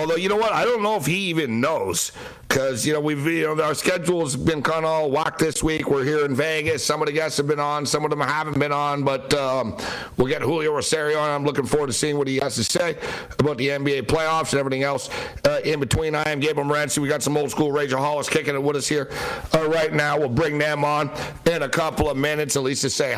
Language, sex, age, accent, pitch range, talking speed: English, male, 60-79, American, 140-170 Hz, 265 wpm